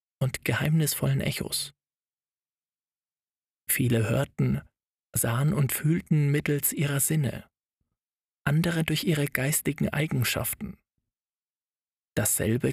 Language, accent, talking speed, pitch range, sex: German, German, 80 wpm, 125-150 Hz, male